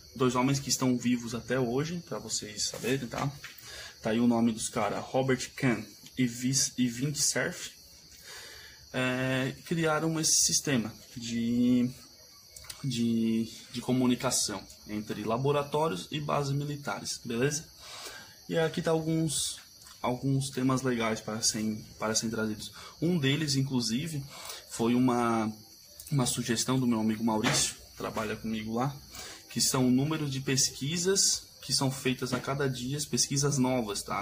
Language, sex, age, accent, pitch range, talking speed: Portuguese, male, 10-29, Brazilian, 115-135 Hz, 135 wpm